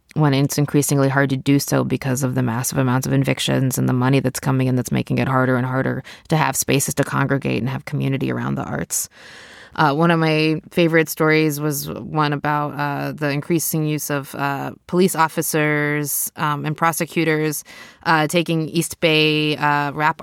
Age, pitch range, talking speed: 20-39, 140-170 Hz, 185 wpm